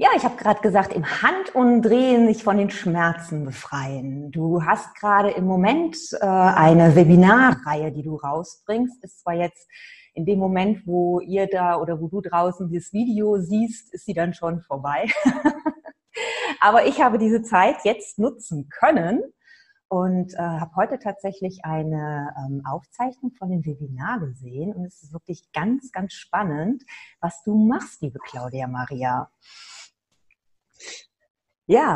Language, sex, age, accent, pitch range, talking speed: German, female, 30-49, German, 165-230 Hz, 150 wpm